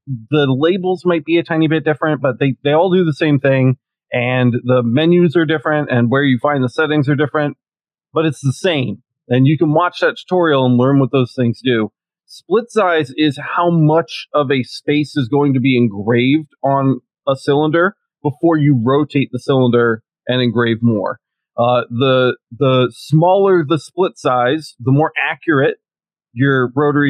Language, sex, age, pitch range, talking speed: English, male, 30-49, 125-150 Hz, 180 wpm